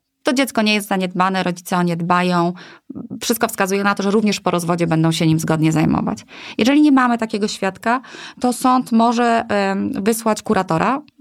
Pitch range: 175-230 Hz